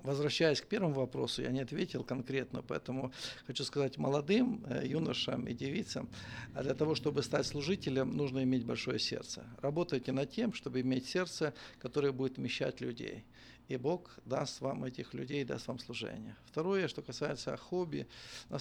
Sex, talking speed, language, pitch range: male, 155 wpm, Russian, 130-160 Hz